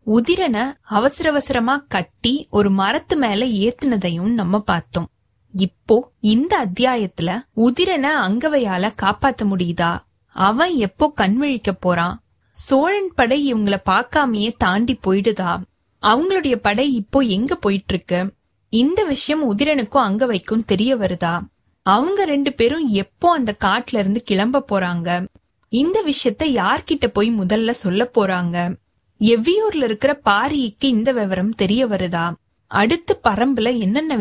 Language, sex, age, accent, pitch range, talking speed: Tamil, female, 20-39, native, 195-270 Hz, 105 wpm